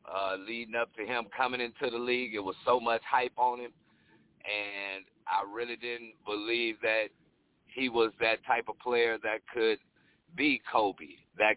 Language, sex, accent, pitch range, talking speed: English, male, American, 105-135 Hz, 170 wpm